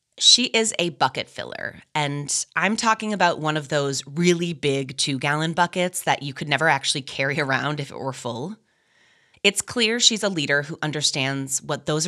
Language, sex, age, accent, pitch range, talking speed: English, female, 20-39, American, 135-185 Hz, 180 wpm